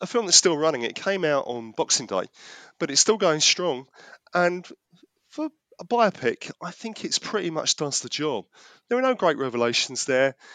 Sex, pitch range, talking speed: male, 135-215 Hz, 195 wpm